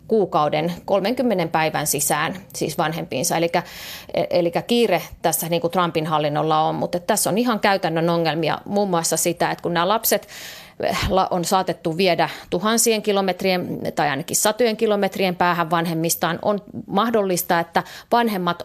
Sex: female